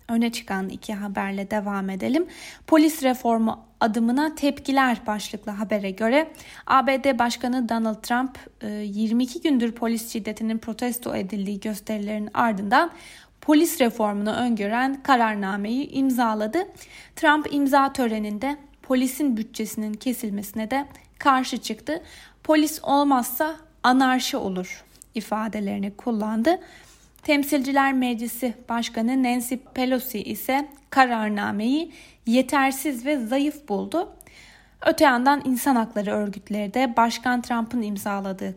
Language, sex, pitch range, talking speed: Turkish, female, 215-275 Hz, 100 wpm